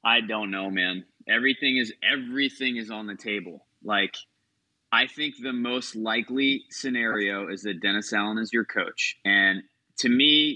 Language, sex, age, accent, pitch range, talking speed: English, male, 20-39, American, 105-140 Hz, 160 wpm